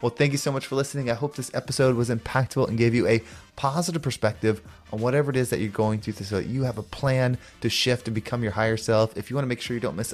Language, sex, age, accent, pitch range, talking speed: English, male, 20-39, American, 110-135 Hz, 290 wpm